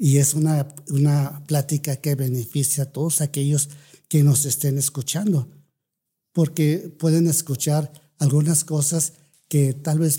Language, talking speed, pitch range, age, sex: Spanish, 130 wpm, 145-175 Hz, 50-69, male